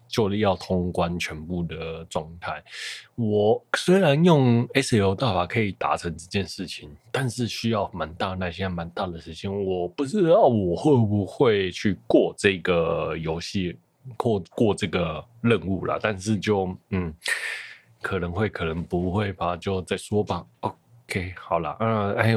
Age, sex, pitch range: 20-39, male, 90-115 Hz